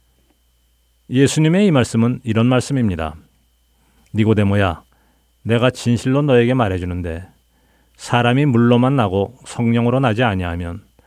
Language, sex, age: Korean, male, 40-59